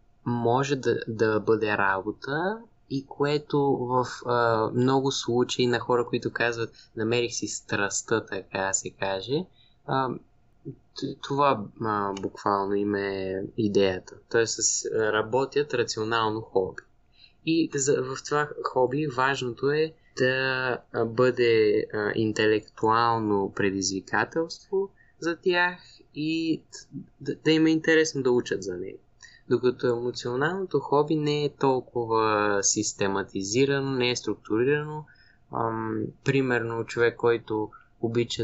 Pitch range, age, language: 105-130 Hz, 20-39, Bulgarian